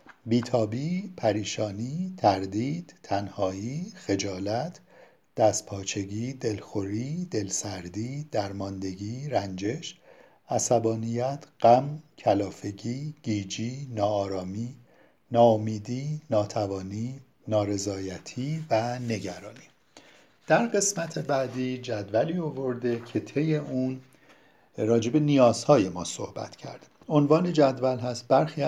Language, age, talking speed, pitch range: Persian, 50-69, 75 wpm, 105-150 Hz